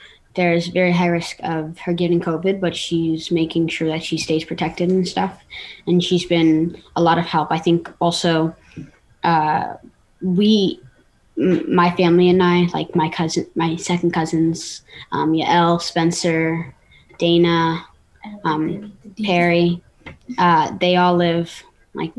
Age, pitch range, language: 20-39, 165-180 Hz, English